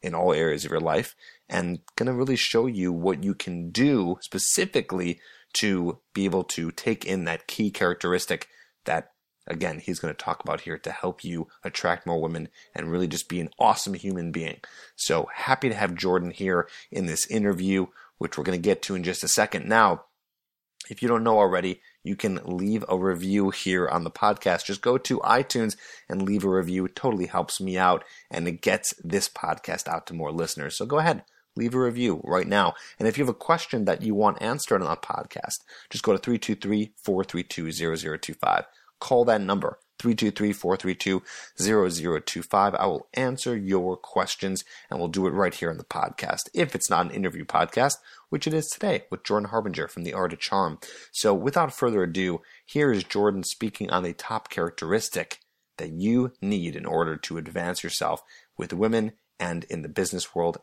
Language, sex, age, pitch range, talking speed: English, male, 30-49, 90-110 Hz, 185 wpm